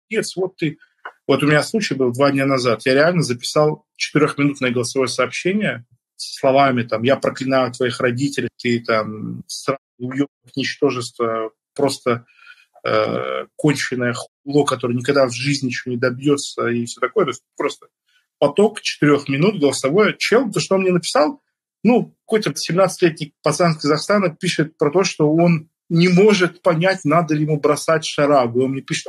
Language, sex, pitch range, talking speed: Russian, male, 130-175 Hz, 160 wpm